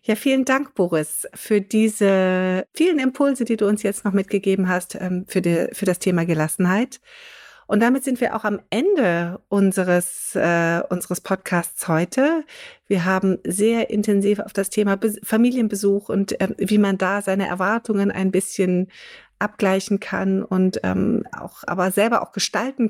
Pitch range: 190-215 Hz